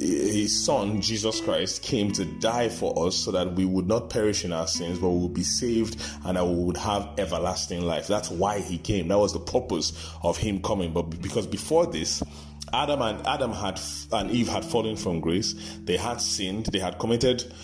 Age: 30-49